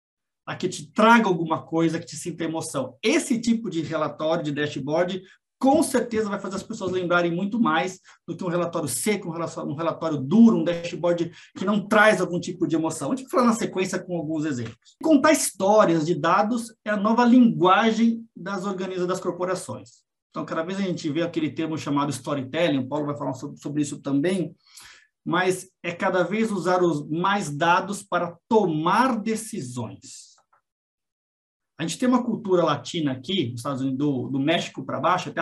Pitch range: 155-210 Hz